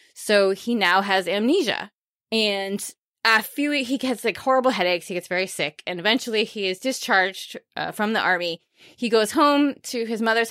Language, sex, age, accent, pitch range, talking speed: English, female, 20-39, American, 180-230 Hz, 190 wpm